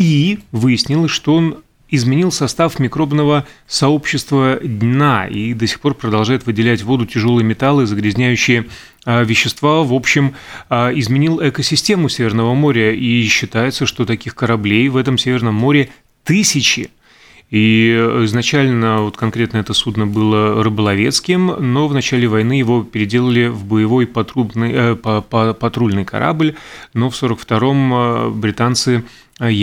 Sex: male